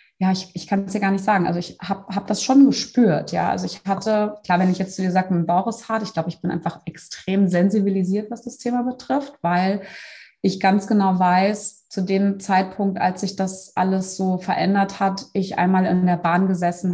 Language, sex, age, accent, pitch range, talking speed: German, female, 20-39, German, 170-200 Hz, 225 wpm